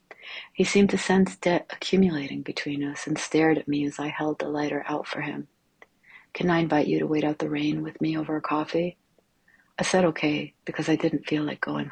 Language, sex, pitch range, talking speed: English, female, 150-165 Hz, 215 wpm